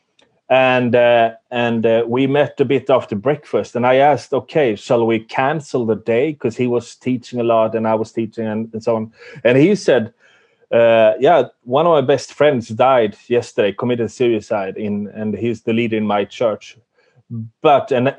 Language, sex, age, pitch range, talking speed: English, male, 30-49, 110-140 Hz, 190 wpm